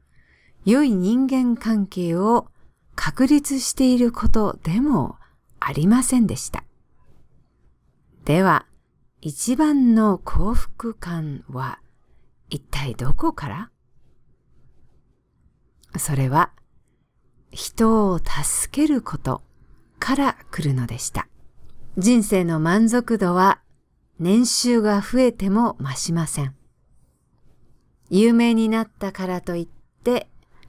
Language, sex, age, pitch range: English, female, 50-69, 160-240 Hz